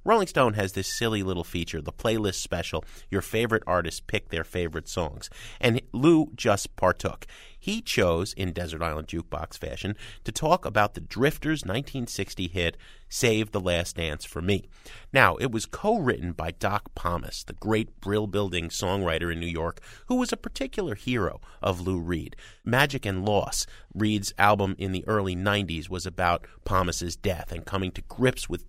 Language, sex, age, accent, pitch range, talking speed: English, male, 30-49, American, 90-135 Hz, 175 wpm